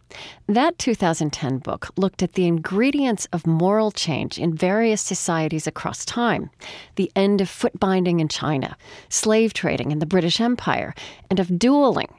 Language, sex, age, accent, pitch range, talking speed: English, female, 40-59, American, 160-220 Hz, 155 wpm